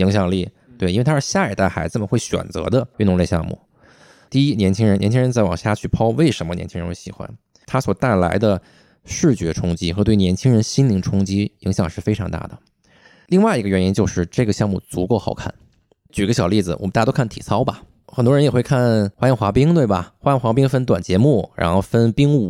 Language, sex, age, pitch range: Chinese, male, 20-39, 95-145 Hz